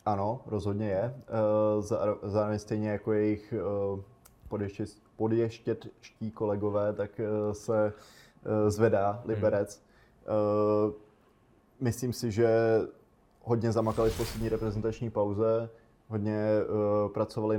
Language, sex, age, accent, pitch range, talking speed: Czech, male, 20-39, native, 100-110 Hz, 75 wpm